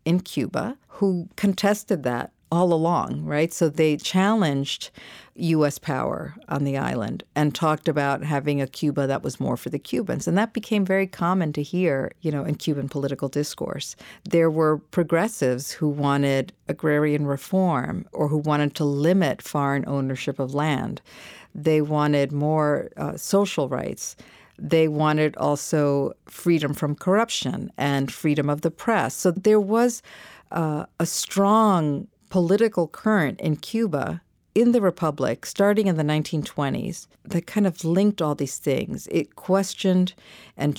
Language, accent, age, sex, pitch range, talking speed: English, American, 50-69, female, 145-185 Hz, 150 wpm